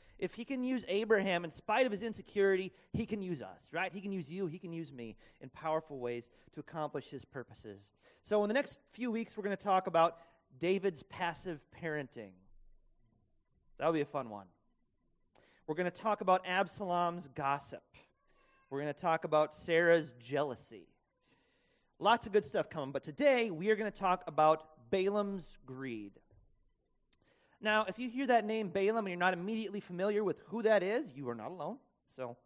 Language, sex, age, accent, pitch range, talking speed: English, male, 30-49, American, 140-195 Hz, 185 wpm